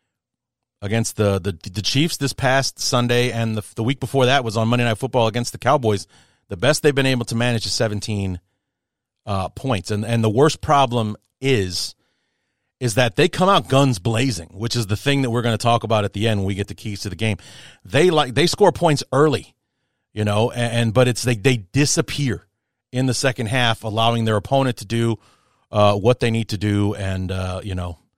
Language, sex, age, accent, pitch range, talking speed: English, male, 40-59, American, 105-130 Hz, 215 wpm